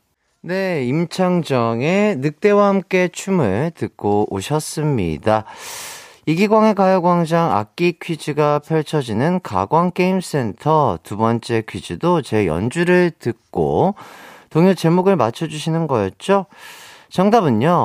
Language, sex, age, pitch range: Korean, male, 40-59, 120-190 Hz